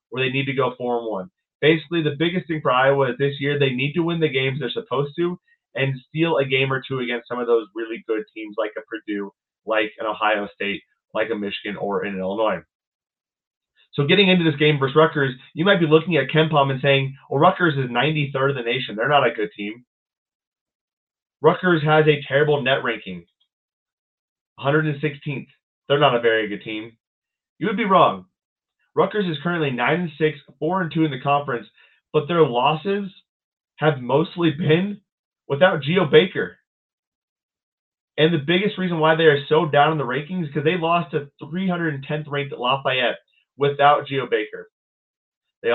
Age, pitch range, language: 20-39, 125-160 Hz, English